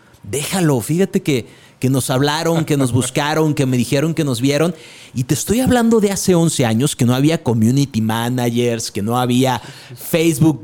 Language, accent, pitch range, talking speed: Spanish, Mexican, 125-165 Hz, 180 wpm